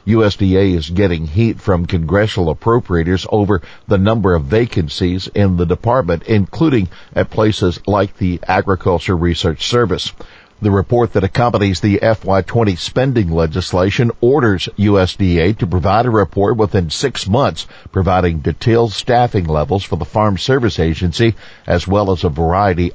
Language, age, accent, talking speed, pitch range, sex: English, 60-79, American, 140 wpm, 90-110 Hz, male